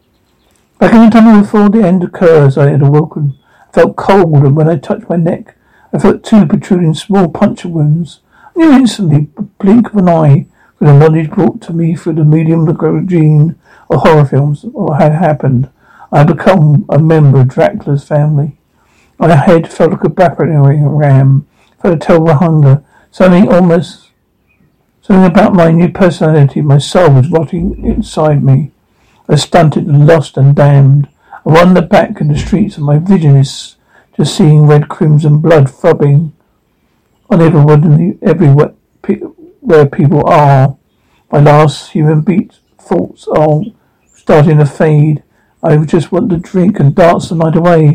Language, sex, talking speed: English, male, 170 wpm